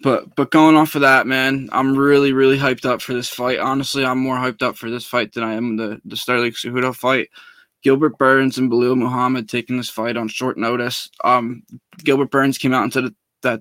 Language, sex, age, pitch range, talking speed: English, male, 10-29, 120-130 Hz, 225 wpm